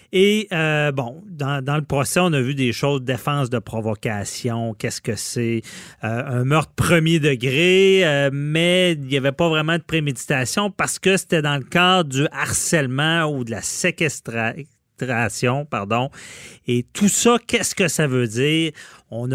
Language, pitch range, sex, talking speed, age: French, 120-165 Hz, male, 165 wpm, 30-49